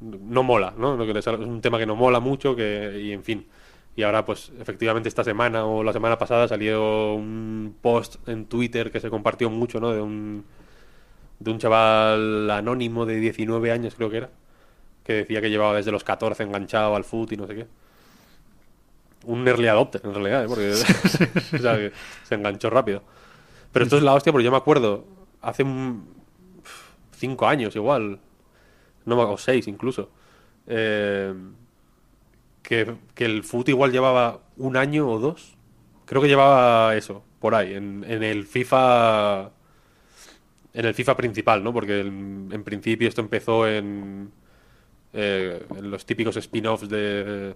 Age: 20-39